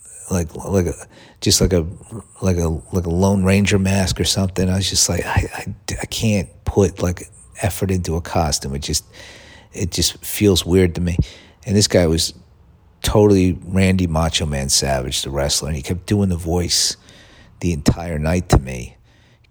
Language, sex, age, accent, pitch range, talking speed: English, male, 50-69, American, 80-100 Hz, 185 wpm